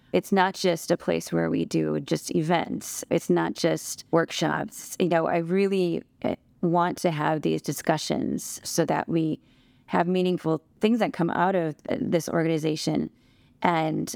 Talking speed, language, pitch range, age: 155 wpm, English, 165-190 Hz, 20-39